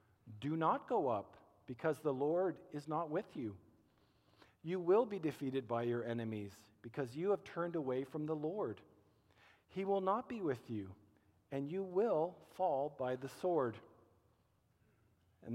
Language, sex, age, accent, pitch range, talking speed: English, male, 50-69, American, 110-160 Hz, 155 wpm